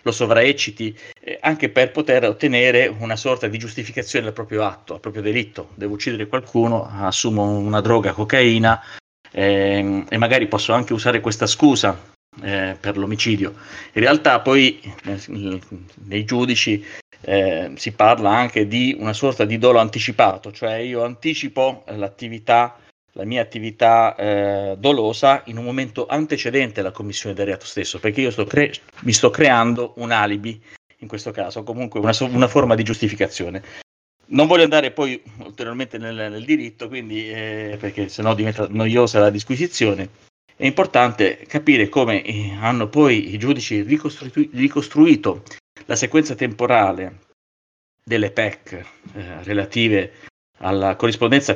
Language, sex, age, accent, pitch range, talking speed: Italian, male, 40-59, native, 100-125 Hz, 140 wpm